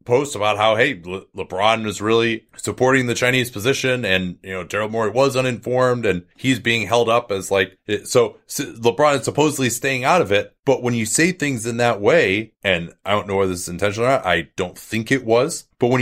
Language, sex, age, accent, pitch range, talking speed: English, male, 30-49, American, 105-125 Hz, 220 wpm